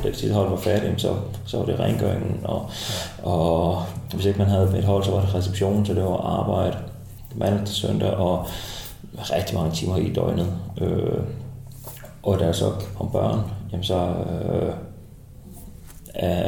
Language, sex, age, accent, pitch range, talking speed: Danish, male, 30-49, native, 95-105 Hz, 165 wpm